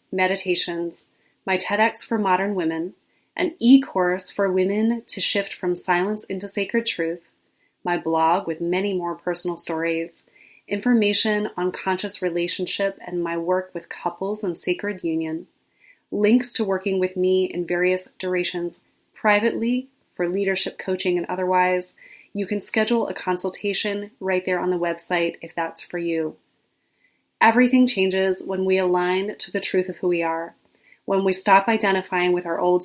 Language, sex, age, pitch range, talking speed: English, female, 30-49, 175-200 Hz, 150 wpm